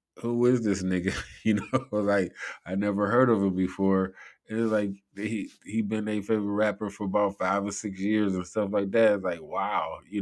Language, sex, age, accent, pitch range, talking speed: English, male, 20-39, American, 95-110 Hz, 210 wpm